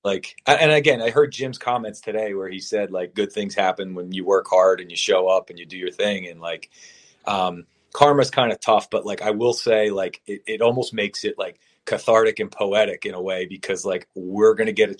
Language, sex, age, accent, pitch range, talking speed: English, male, 30-49, American, 95-125 Hz, 240 wpm